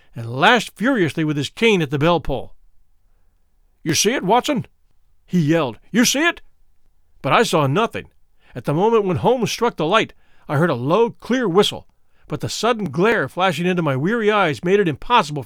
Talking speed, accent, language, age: 190 wpm, American, English, 50-69